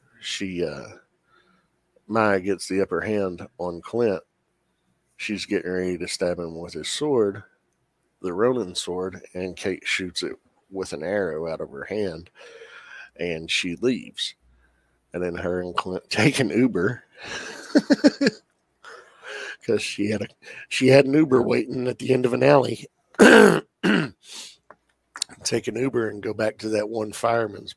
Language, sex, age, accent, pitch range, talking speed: English, male, 50-69, American, 95-125 Hz, 145 wpm